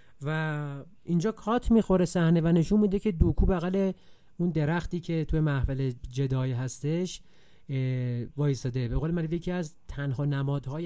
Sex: male